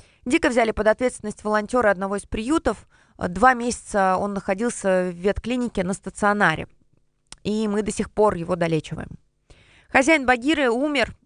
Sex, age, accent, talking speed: female, 20-39, native, 140 wpm